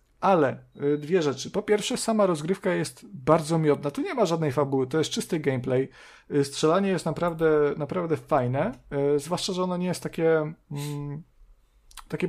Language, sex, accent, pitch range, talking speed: Polish, male, native, 135-170 Hz, 155 wpm